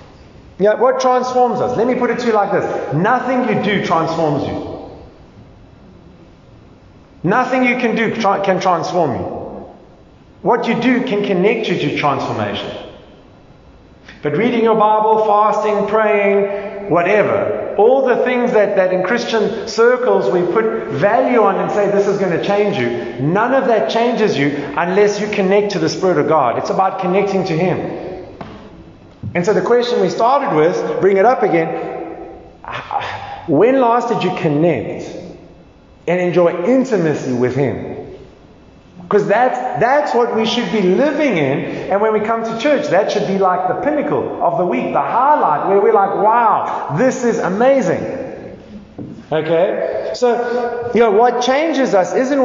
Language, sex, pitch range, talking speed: English, male, 185-240 Hz, 155 wpm